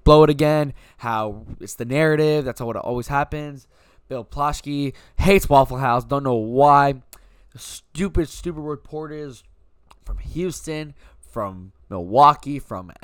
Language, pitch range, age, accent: English, 105-145 Hz, 10-29, American